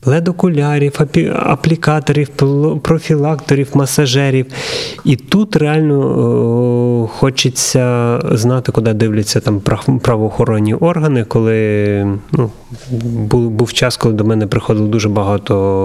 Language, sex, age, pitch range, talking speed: Ukrainian, male, 30-49, 105-140 Hz, 100 wpm